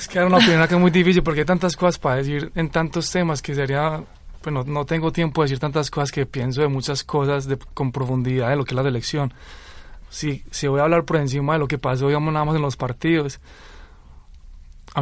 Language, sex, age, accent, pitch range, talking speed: Spanish, male, 20-39, Colombian, 125-150 Hz, 245 wpm